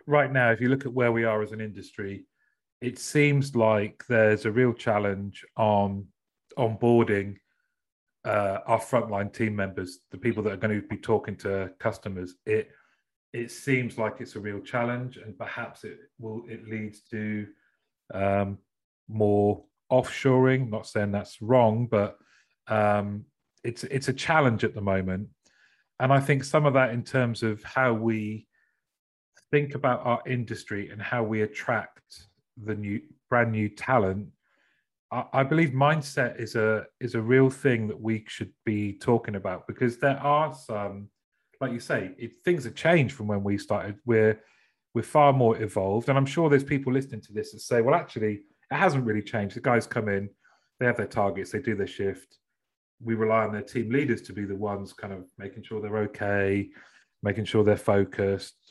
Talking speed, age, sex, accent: 180 wpm, 30-49, male, British